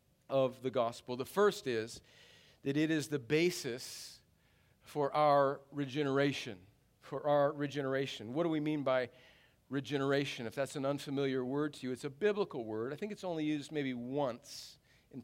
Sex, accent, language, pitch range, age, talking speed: male, American, English, 135-175 Hz, 50-69, 165 wpm